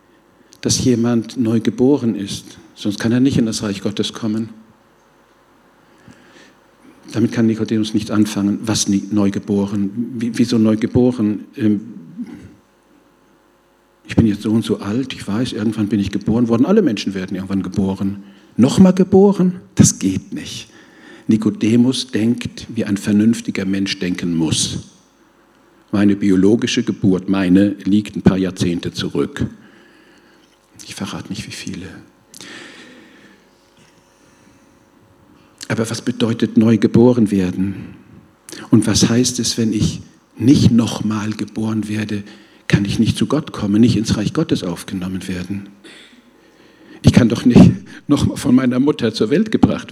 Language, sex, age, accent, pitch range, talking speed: German, male, 50-69, German, 100-120 Hz, 130 wpm